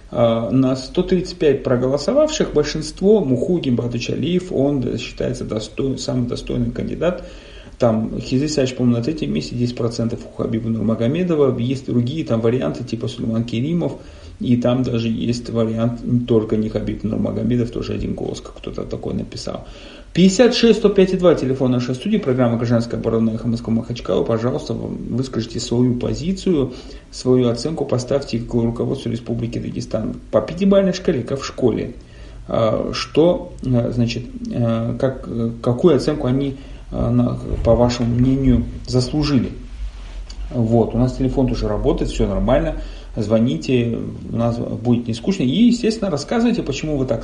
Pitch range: 115-140 Hz